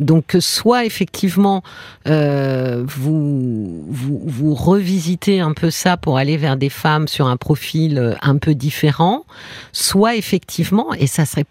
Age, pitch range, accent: 50-69, 145-185 Hz, French